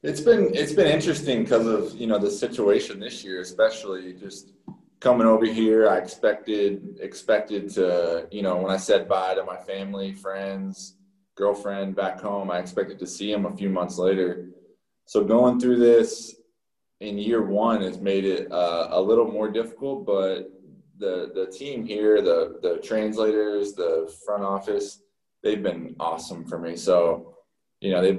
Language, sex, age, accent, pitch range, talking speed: English, male, 20-39, American, 95-120 Hz, 170 wpm